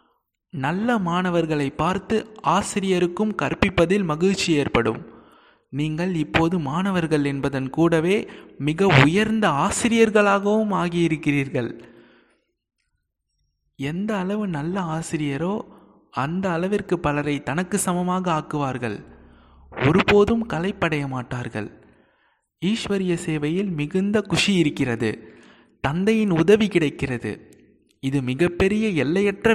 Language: Tamil